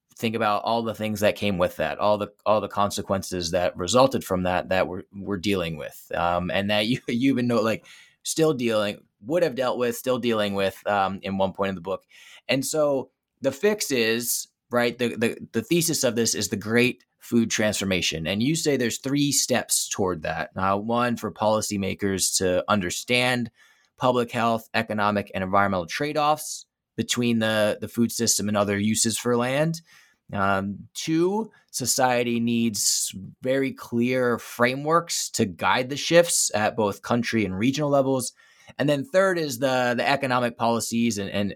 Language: English